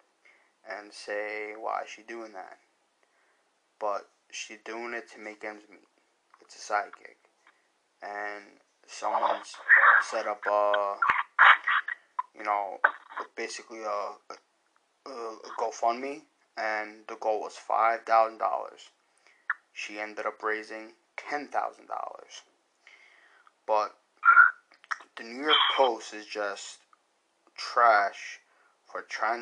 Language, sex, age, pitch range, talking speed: English, male, 20-39, 105-115 Hz, 100 wpm